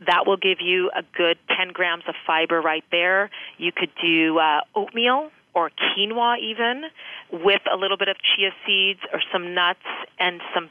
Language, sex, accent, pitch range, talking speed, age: English, female, American, 165-195 Hz, 180 wpm, 30-49